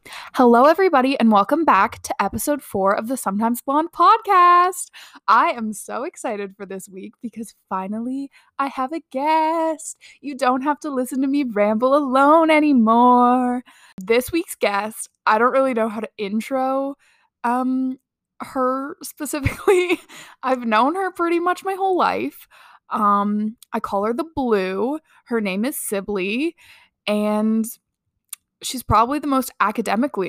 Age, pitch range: 20-39, 210-285 Hz